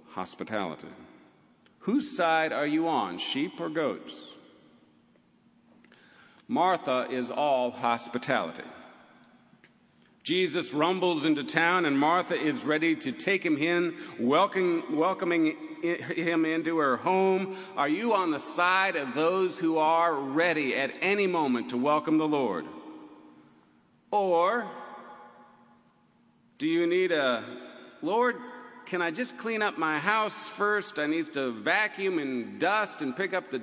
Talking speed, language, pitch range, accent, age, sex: 125 wpm, English, 140-195 Hz, American, 50-69, male